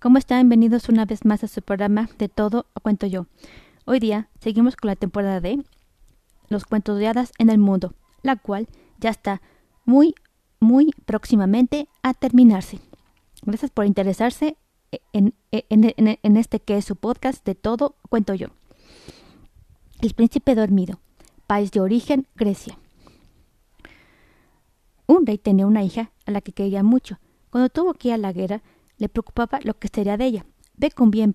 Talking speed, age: 165 wpm, 20-39